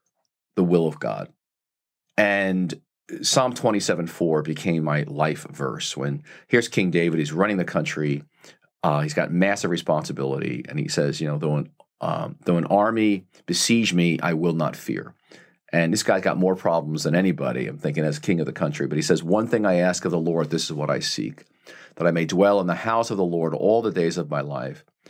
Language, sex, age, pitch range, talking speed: English, male, 40-59, 80-105 Hz, 210 wpm